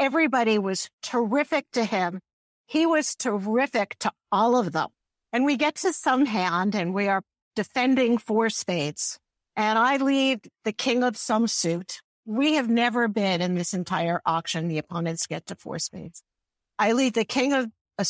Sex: female